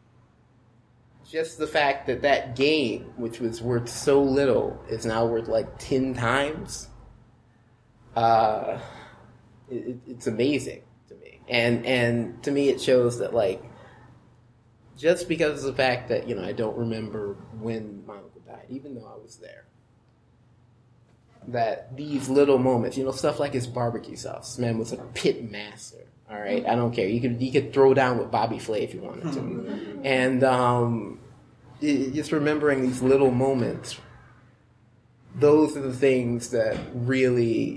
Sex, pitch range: male, 120-135 Hz